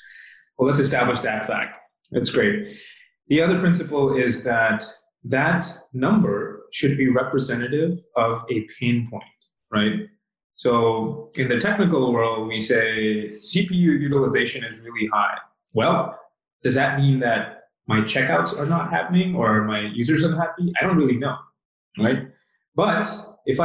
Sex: male